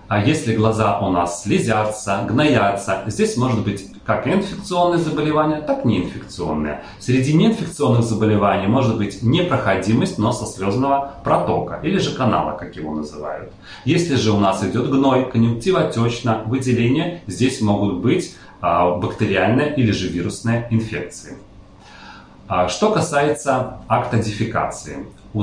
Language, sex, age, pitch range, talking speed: Russian, male, 30-49, 100-135 Hz, 120 wpm